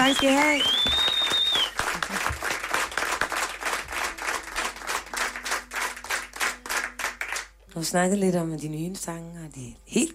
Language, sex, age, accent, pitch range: Danish, female, 30-49, native, 150-185 Hz